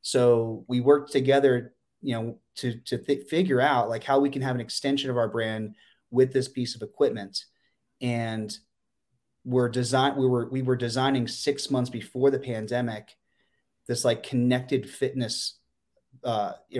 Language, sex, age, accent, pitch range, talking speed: English, male, 30-49, American, 110-130 Hz, 155 wpm